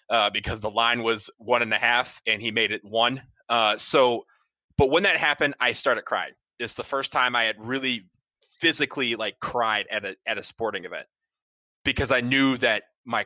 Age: 30-49